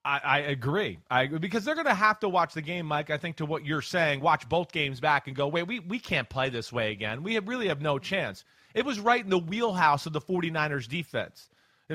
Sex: male